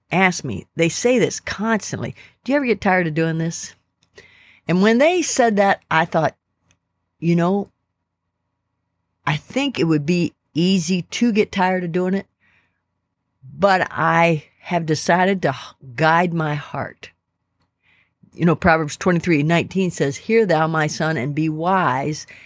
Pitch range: 140-180 Hz